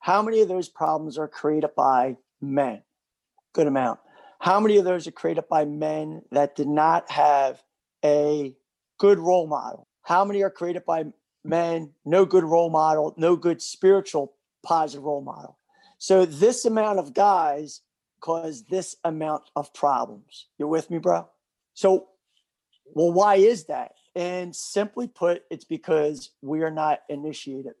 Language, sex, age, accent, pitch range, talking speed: English, male, 40-59, American, 145-190 Hz, 155 wpm